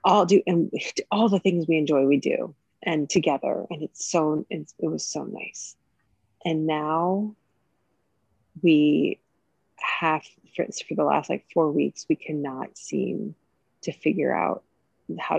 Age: 30-49